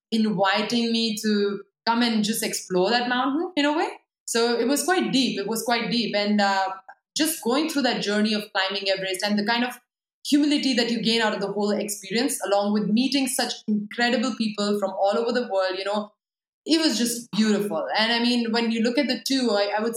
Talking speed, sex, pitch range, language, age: 220 wpm, female, 200-240 Hz, English, 20-39